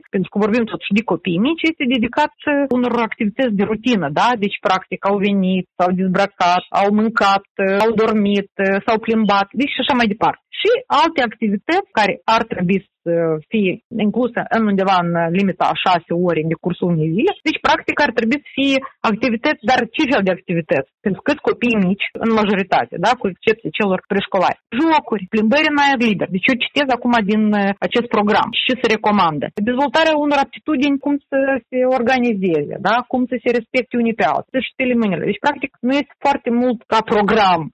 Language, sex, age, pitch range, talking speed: Romanian, female, 30-49, 195-265 Hz, 185 wpm